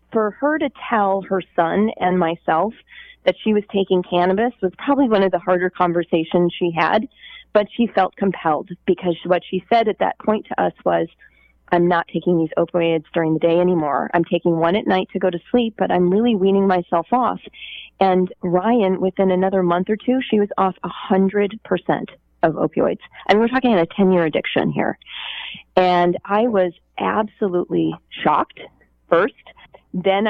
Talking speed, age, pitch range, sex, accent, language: 175 wpm, 30-49, 175-210 Hz, female, American, English